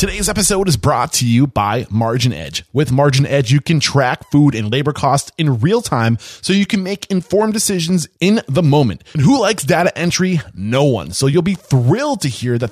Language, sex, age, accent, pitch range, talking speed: English, male, 20-39, American, 120-175 Hz, 210 wpm